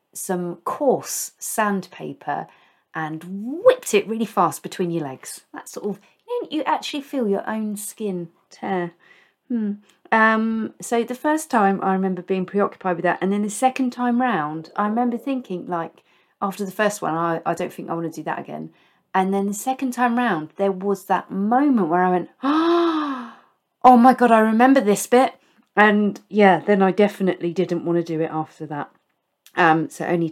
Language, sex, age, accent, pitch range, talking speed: English, female, 40-59, British, 175-235 Hz, 185 wpm